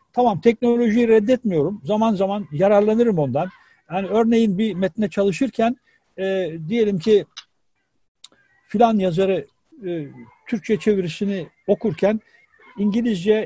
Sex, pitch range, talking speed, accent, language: male, 175-220 Hz, 100 wpm, native, Turkish